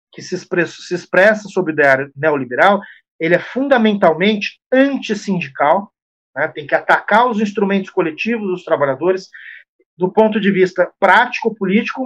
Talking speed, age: 135 wpm, 40-59